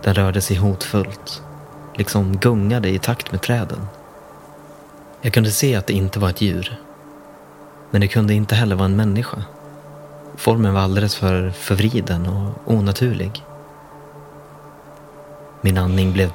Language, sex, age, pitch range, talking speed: Swedish, male, 30-49, 95-120 Hz, 135 wpm